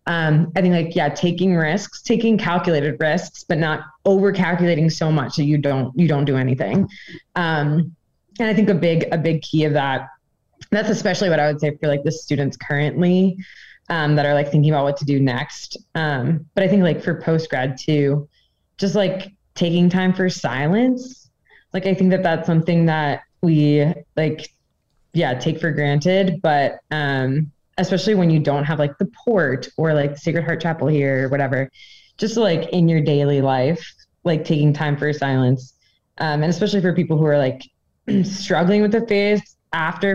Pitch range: 145-180 Hz